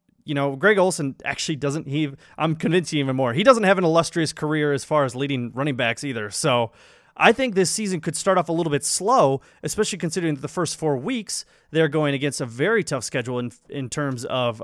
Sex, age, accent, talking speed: male, 30-49, American, 215 wpm